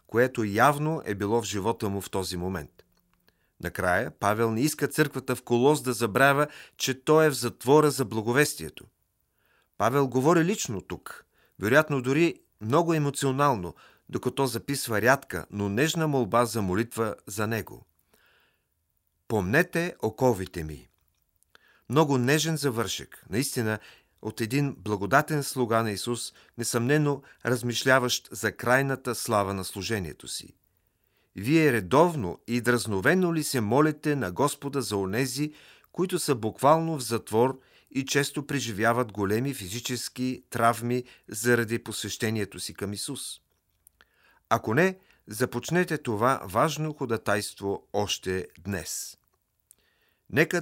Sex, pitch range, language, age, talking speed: male, 105-140 Hz, Bulgarian, 40-59, 120 wpm